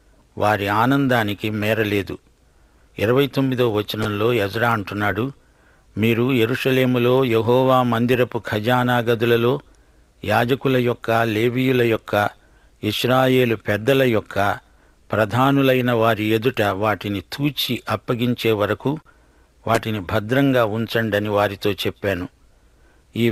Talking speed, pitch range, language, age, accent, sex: 80 wpm, 100-125 Hz, English, 60-79, Indian, male